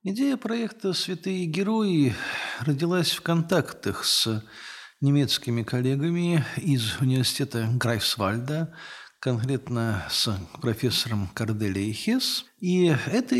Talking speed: 85 wpm